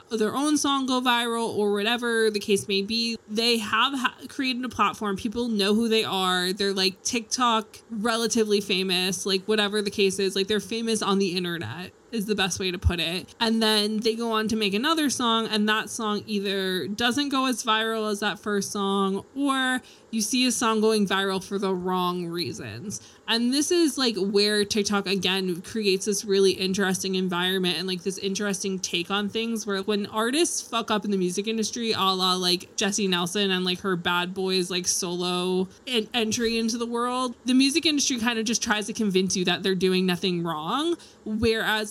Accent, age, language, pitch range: American, 20-39, English, 190-230 Hz